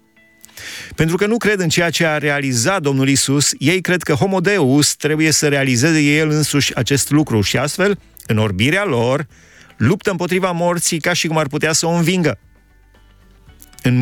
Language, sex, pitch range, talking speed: Romanian, male, 110-155 Hz, 165 wpm